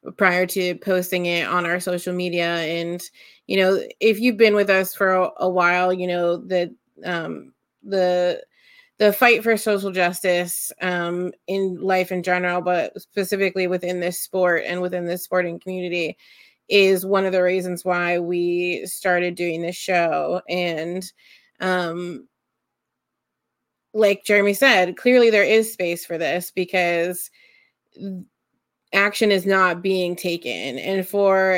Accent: American